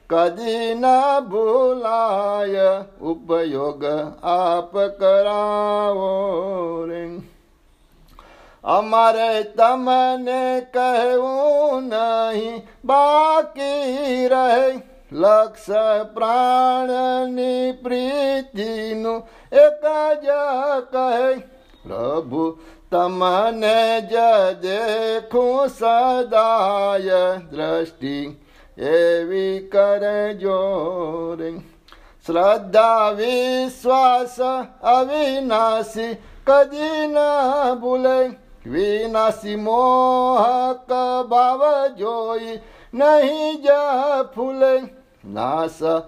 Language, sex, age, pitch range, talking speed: Gujarati, male, 60-79, 195-255 Hz, 50 wpm